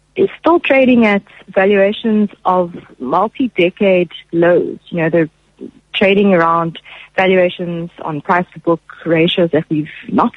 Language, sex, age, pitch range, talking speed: English, female, 30-49, 165-205 Hz, 135 wpm